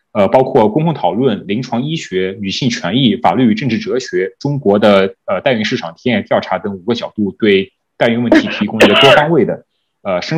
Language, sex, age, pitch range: Chinese, male, 20-39, 105-155 Hz